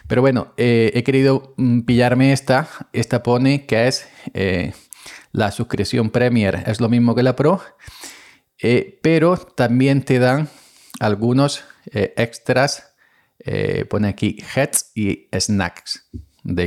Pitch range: 95-115 Hz